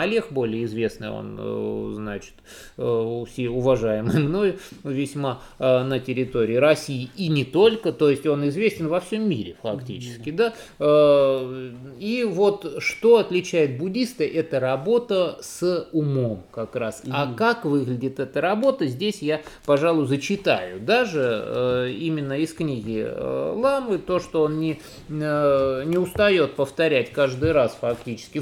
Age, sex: 20-39, male